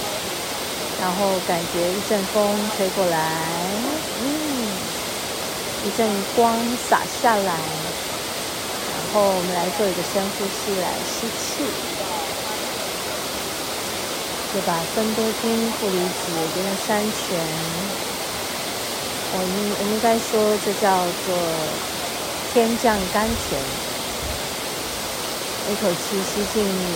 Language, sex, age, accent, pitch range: Chinese, female, 40-59, native, 180-215 Hz